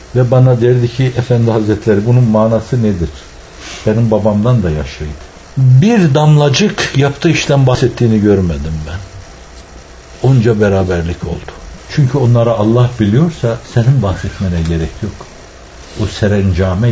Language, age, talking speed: Turkish, 60-79, 115 wpm